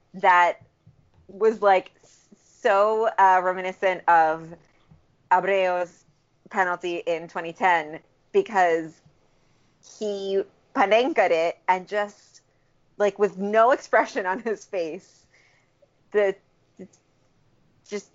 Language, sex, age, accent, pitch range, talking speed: English, female, 30-49, American, 160-195 Hz, 90 wpm